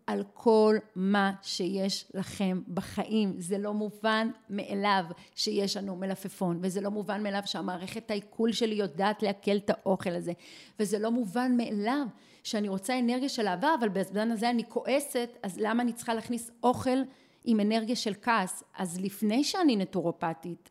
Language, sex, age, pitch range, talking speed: Hebrew, female, 40-59, 190-240 Hz, 155 wpm